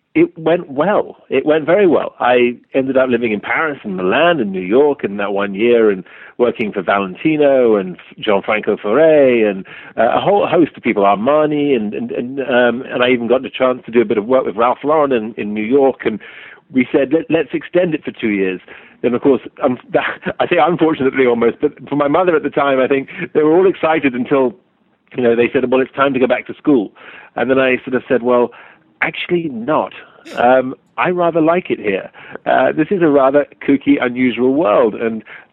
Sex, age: male, 50-69